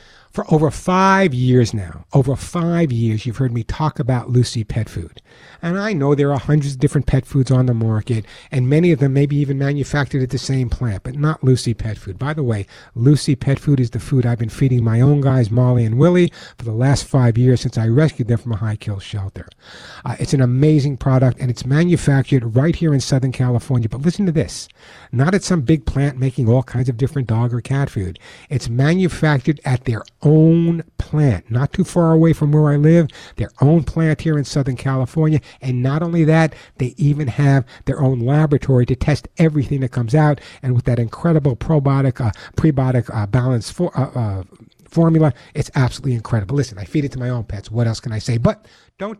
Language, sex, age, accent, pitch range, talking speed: English, male, 50-69, American, 120-150 Hz, 215 wpm